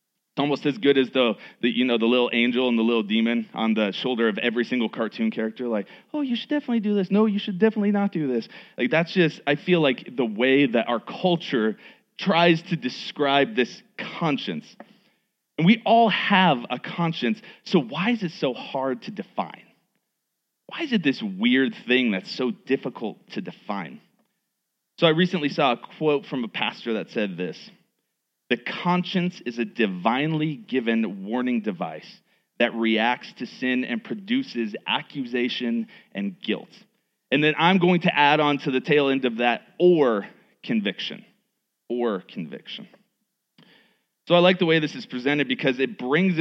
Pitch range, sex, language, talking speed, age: 125-195 Hz, male, English, 175 wpm, 30-49